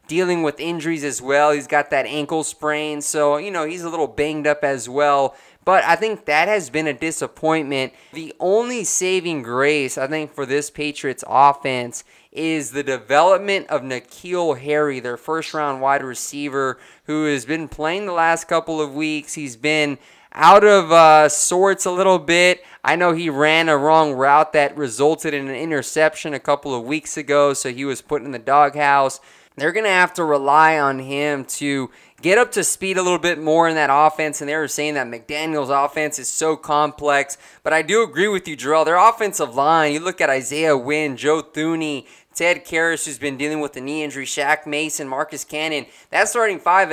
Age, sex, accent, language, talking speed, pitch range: 20-39, male, American, English, 195 wpm, 145-165 Hz